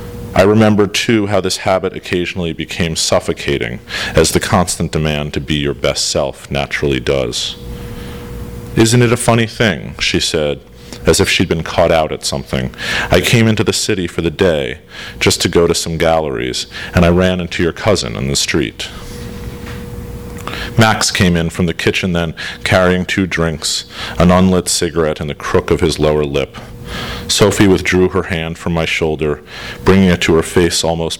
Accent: American